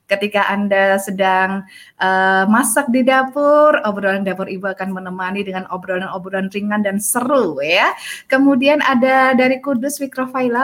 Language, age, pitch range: Indonesian, 20-39, 195-280 Hz